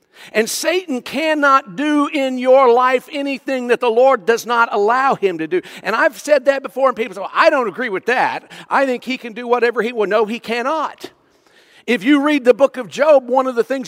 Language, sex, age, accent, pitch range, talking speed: English, male, 50-69, American, 195-310 Hz, 230 wpm